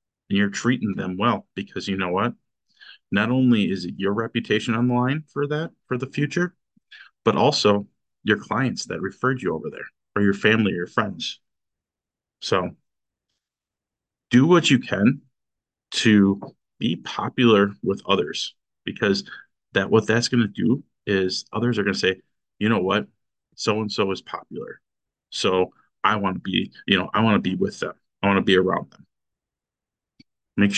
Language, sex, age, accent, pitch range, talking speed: English, male, 30-49, American, 100-120 Hz, 170 wpm